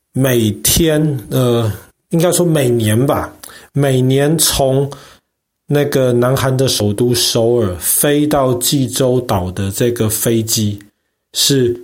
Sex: male